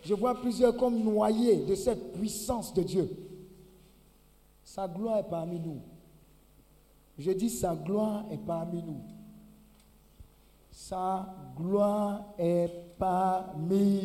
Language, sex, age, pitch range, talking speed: French, male, 50-69, 185-240 Hz, 110 wpm